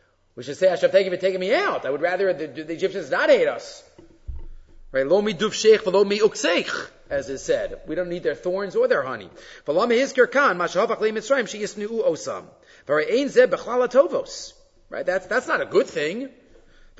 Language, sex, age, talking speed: English, male, 40-59, 195 wpm